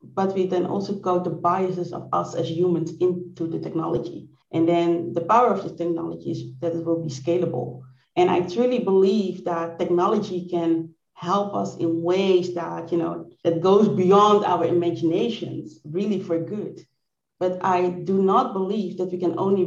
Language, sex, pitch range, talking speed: English, female, 170-190 Hz, 175 wpm